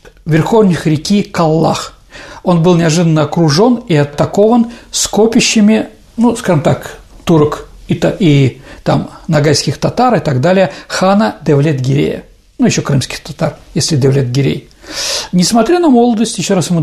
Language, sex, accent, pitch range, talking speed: Russian, male, native, 155-210 Hz, 125 wpm